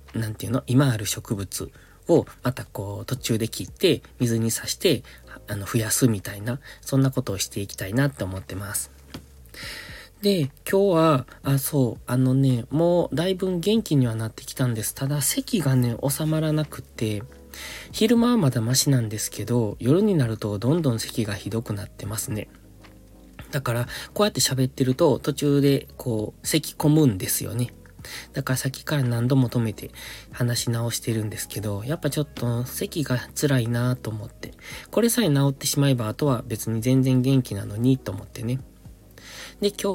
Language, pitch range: Japanese, 110-145 Hz